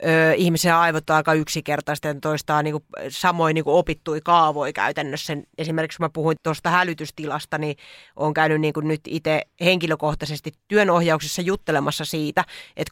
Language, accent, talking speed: Finnish, native, 140 wpm